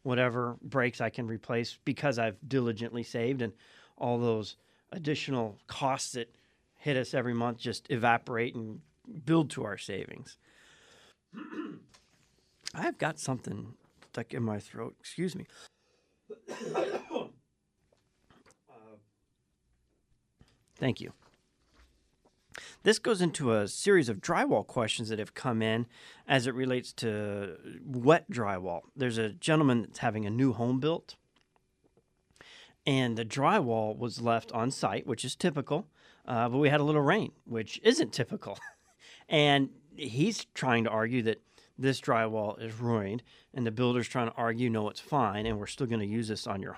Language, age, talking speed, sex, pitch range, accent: English, 40-59, 145 wpm, male, 110-135 Hz, American